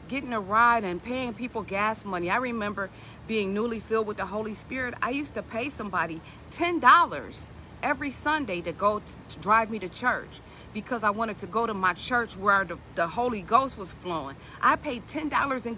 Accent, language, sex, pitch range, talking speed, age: American, English, female, 215-280 Hz, 200 wpm, 50-69